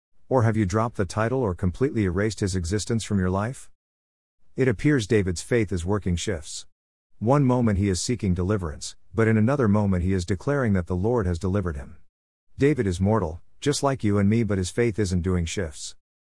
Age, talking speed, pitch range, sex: 50-69, 200 wpm, 90-115 Hz, male